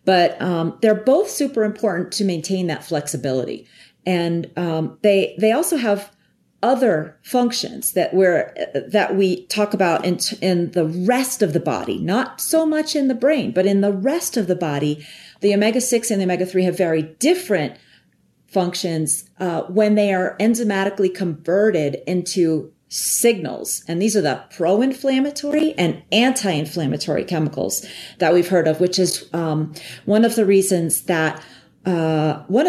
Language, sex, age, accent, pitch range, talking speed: English, female, 40-59, American, 165-210 Hz, 155 wpm